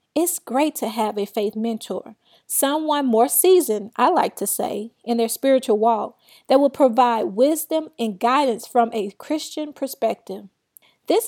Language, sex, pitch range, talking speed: English, female, 225-285 Hz, 155 wpm